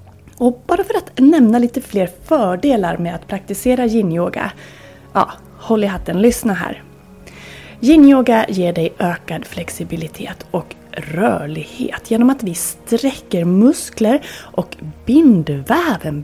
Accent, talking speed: native, 120 wpm